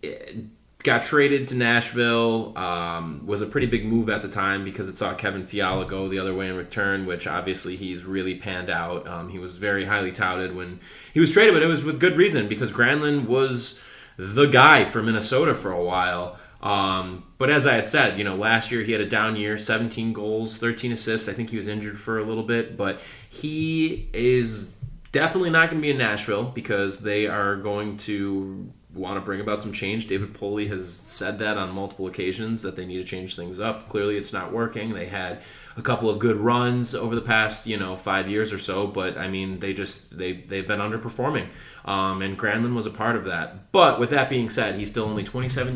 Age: 20-39